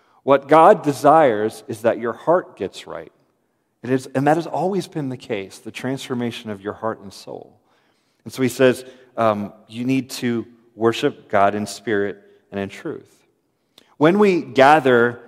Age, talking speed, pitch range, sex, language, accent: 40-59, 170 wpm, 110-130 Hz, male, English, American